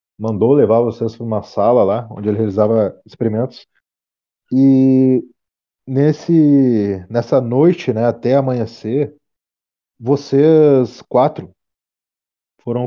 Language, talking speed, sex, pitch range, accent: Portuguese, 100 wpm, male, 105-135 Hz, Brazilian